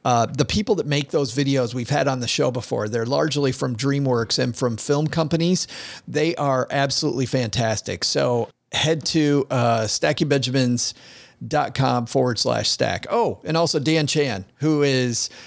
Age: 40-59